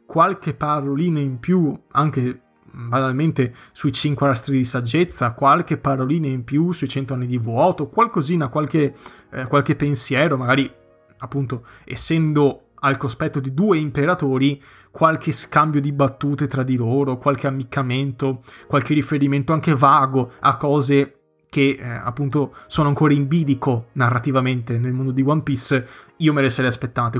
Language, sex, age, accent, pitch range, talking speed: Italian, male, 20-39, native, 130-150 Hz, 145 wpm